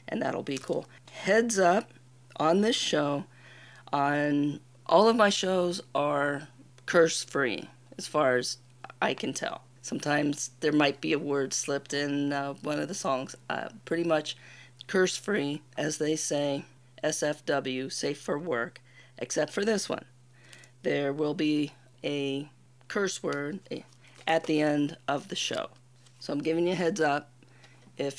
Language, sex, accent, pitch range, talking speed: English, female, American, 130-165 Hz, 150 wpm